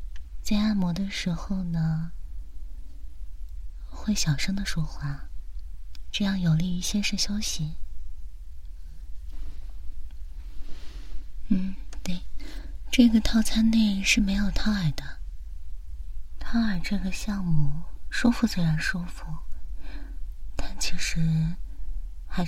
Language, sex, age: Chinese, female, 30-49